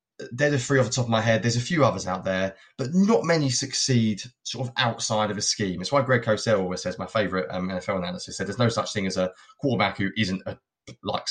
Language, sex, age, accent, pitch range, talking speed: English, male, 20-39, British, 100-130 Hz, 255 wpm